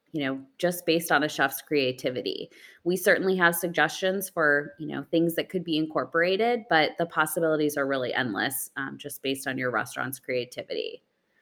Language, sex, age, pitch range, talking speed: English, female, 20-39, 140-185 Hz, 175 wpm